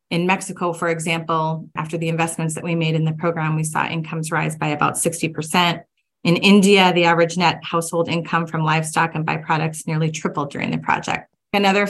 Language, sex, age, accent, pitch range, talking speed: English, female, 30-49, American, 160-175 Hz, 185 wpm